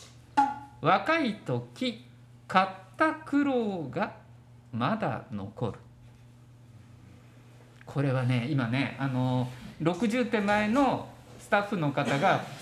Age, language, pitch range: 50-69, Japanese, 120-200 Hz